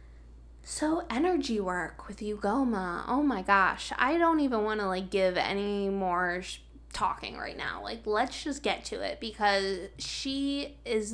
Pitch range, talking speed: 195-240 Hz, 155 wpm